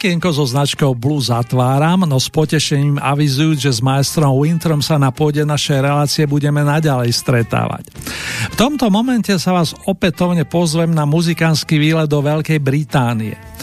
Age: 50-69